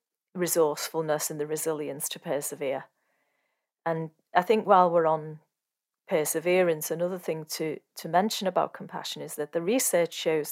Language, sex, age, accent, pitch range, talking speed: English, female, 40-59, British, 155-175 Hz, 145 wpm